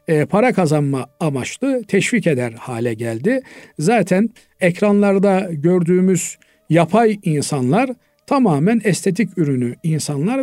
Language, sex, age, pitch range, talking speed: Turkish, male, 50-69, 145-210 Hz, 90 wpm